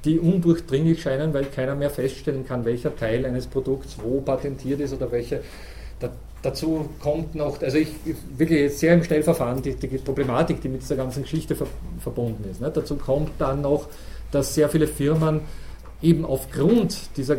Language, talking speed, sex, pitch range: German, 175 wpm, male, 130-165 Hz